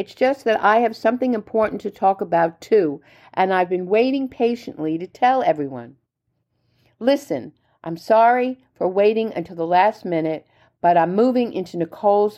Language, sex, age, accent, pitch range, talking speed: English, female, 50-69, American, 155-240 Hz, 160 wpm